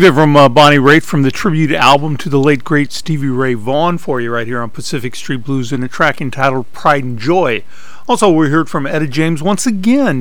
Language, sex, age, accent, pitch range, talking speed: English, male, 50-69, American, 135-180 Hz, 225 wpm